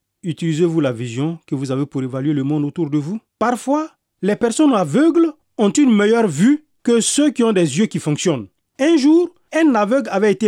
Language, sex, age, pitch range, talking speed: French, male, 40-59, 155-245 Hz, 200 wpm